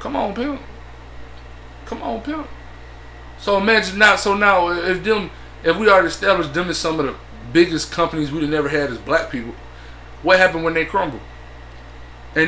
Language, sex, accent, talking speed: English, male, American, 180 wpm